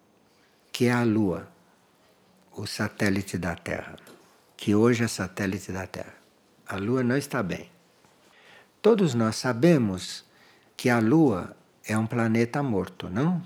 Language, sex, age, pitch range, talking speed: Portuguese, male, 60-79, 100-145 Hz, 135 wpm